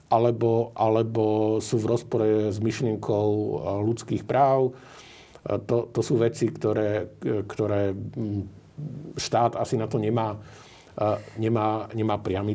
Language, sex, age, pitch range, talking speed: Slovak, male, 50-69, 100-110 Hz, 110 wpm